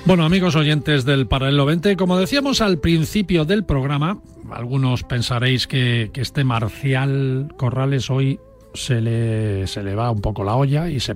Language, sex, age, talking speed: Spanish, male, 40-59, 165 wpm